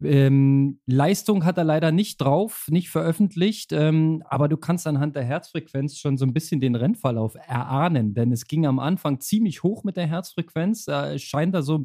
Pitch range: 130-160 Hz